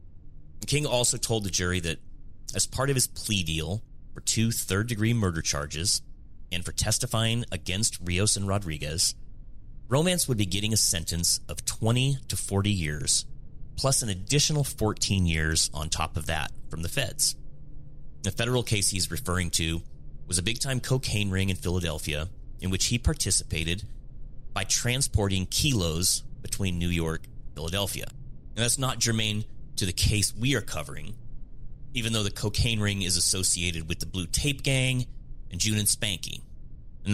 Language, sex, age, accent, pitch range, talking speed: English, male, 30-49, American, 85-120 Hz, 160 wpm